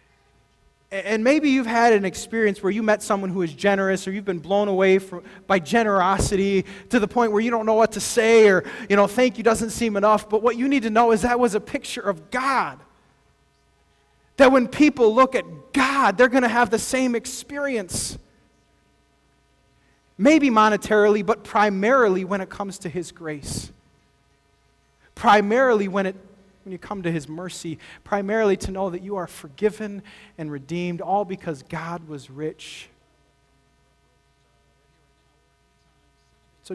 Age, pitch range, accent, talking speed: 20-39, 155-215 Hz, American, 160 wpm